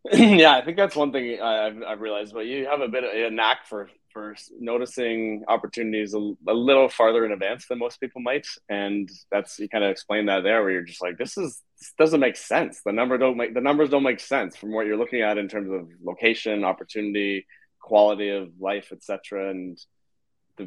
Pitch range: 95-115 Hz